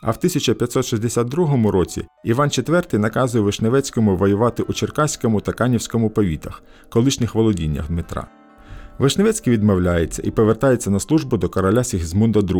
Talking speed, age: 125 wpm, 50-69